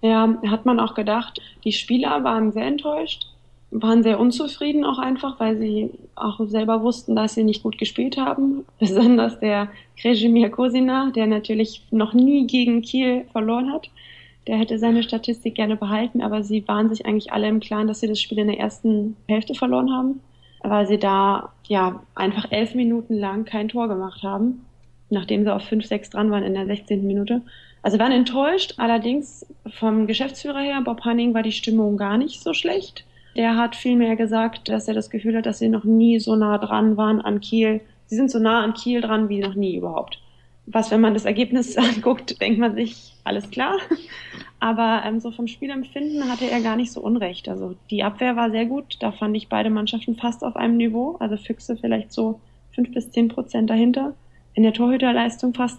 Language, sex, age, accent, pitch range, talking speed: German, female, 20-39, German, 215-240 Hz, 195 wpm